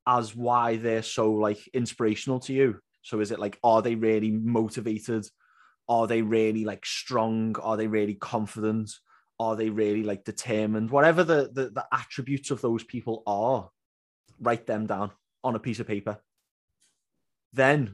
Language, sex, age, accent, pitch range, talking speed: English, male, 20-39, British, 110-130 Hz, 160 wpm